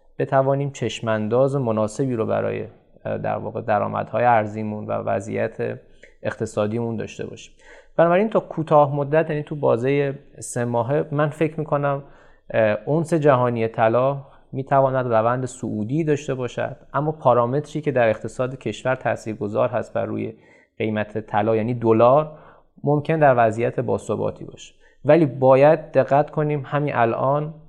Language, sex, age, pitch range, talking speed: Persian, male, 20-39, 110-145 Hz, 130 wpm